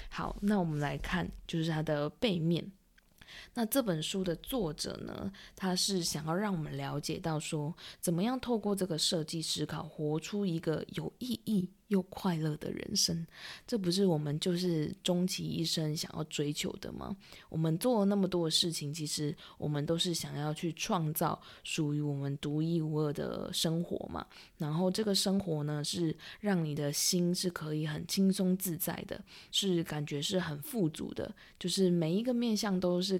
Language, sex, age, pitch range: Chinese, female, 20-39, 155-185 Hz